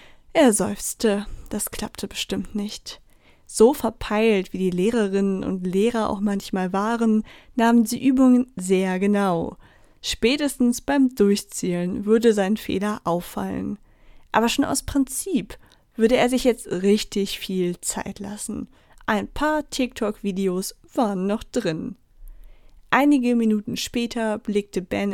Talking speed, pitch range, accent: 120 wpm, 195-240 Hz, German